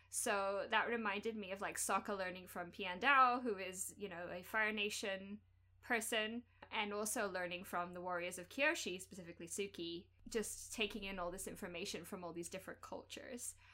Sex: female